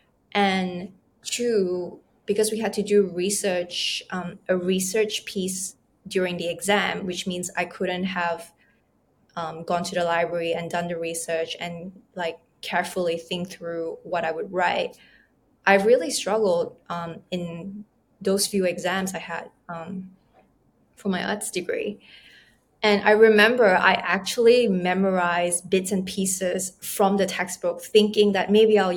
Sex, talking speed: female, 145 wpm